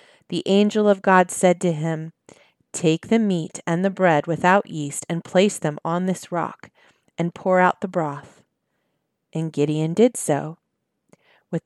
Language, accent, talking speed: English, American, 160 wpm